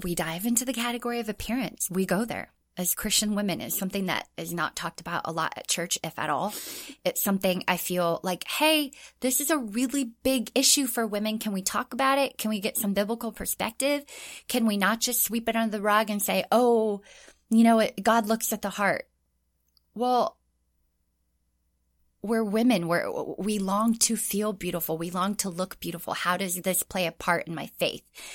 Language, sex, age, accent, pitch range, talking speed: English, female, 20-39, American, 175-230 Hz, 200 wpm